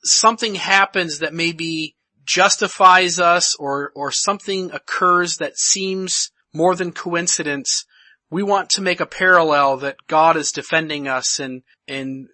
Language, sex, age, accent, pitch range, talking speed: English, male, 40-59, American, 155-190 Hz, 135 wpm